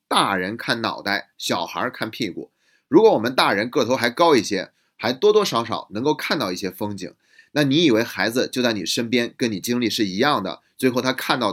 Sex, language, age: male, Chinese, 30-49